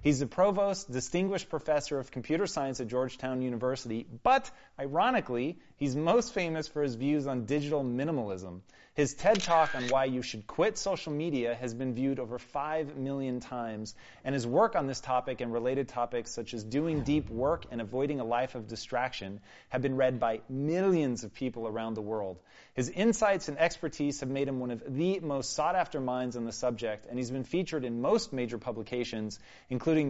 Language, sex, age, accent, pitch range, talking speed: Hindi, male, 30-49, American, 120-150 Hz, 185 wpm